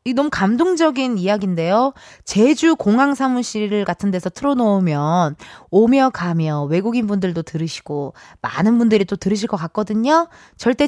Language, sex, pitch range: Korean, female, 190-280 Hz